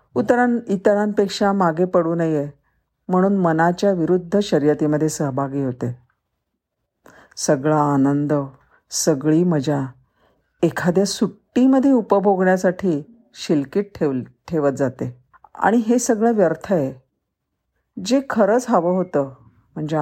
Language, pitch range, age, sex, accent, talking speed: Marathi, 150-195 Hz, 50-69, female, native, 95 wpm